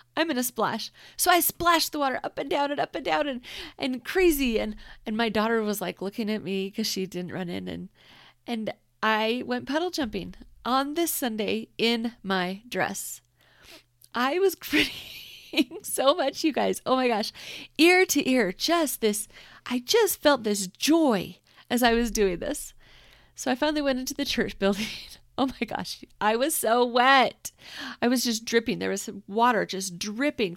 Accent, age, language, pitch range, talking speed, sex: American, 30-49, English, 185-255 Hz, 185 wpm, female